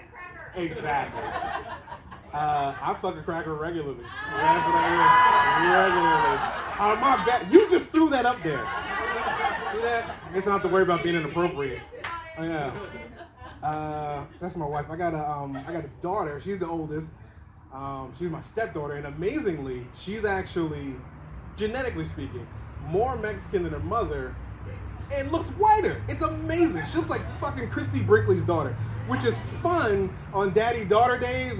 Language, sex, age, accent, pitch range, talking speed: English, male, 20-39, American, 145-215 Hz, 155 wpm